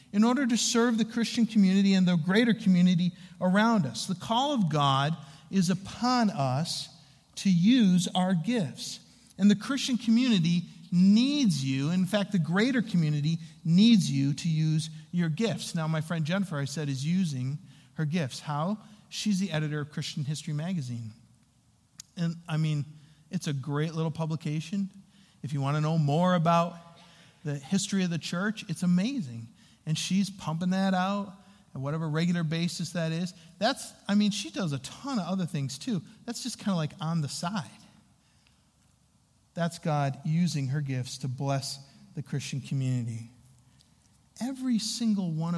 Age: 50-69